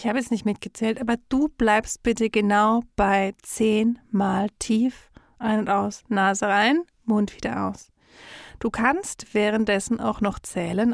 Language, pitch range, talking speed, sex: German, 205-245 Hz, 155 wpm, female